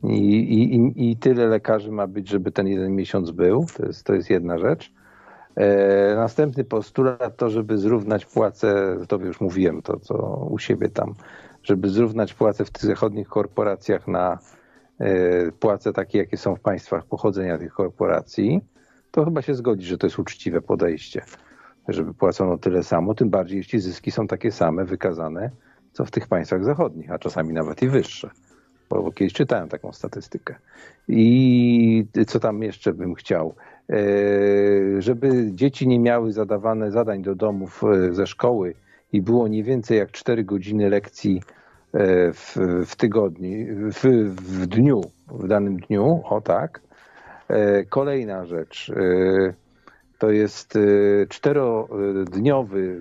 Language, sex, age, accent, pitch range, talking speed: Polish, male, 50-69, native, 95-120 Hz, 140 wpm